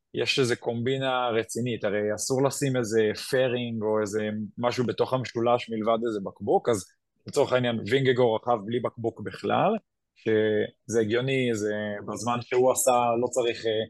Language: Hebrew